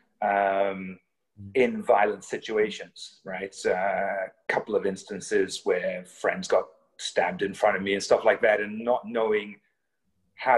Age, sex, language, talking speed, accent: 30-49, male, English, 140 wpm, British